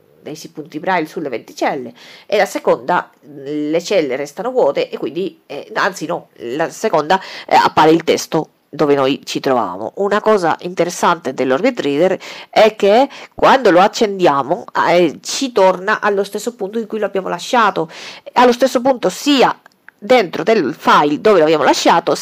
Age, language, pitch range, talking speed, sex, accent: 40-59, Italian, 170-240 Hz, 160 wpm, female, native